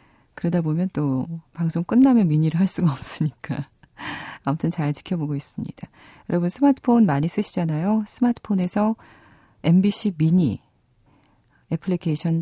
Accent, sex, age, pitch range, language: native, female, 40-59, 145-195 Hz, Korean